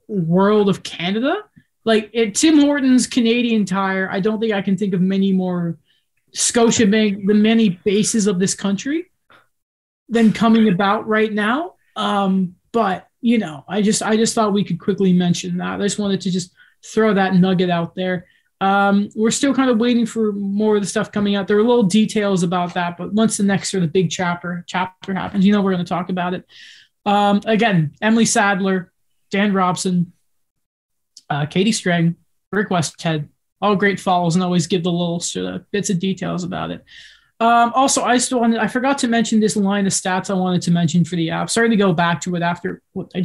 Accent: American